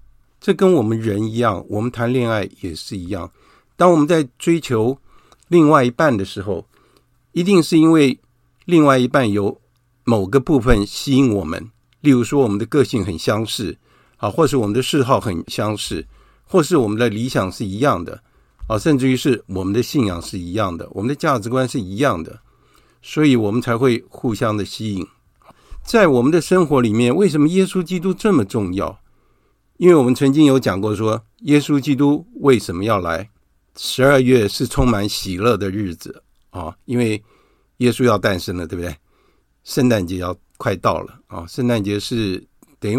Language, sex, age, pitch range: Chinese, male, 60-79, 100-135 Hz